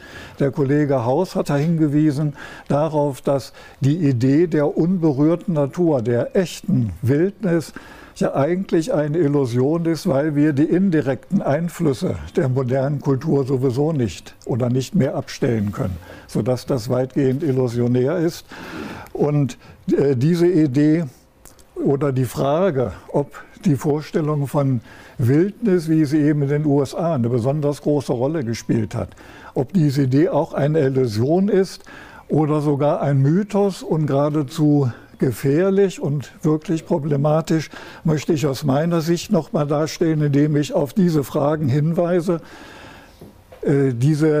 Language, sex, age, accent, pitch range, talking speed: German, male, 60-79, German, 135-165 Hz, 130 wpm